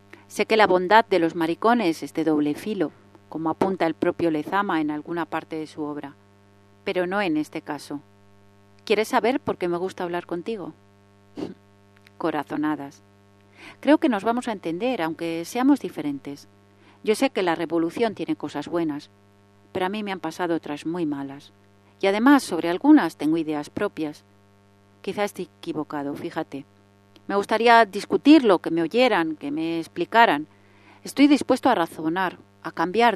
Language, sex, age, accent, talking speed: Spanish, female, 40-59, Spanish, 160 wpm